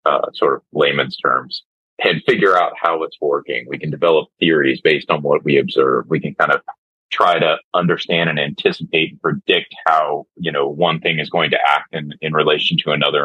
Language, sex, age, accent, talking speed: English, male, 30-49, American, 205 wpm